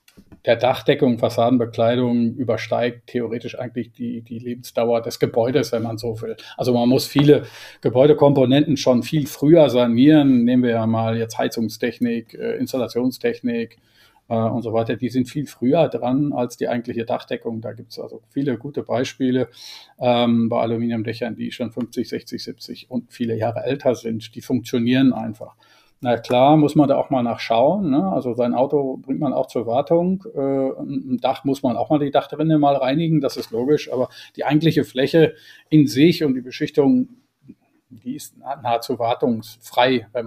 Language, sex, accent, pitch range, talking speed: German, male, German, 115-140 Hz, 165 wpm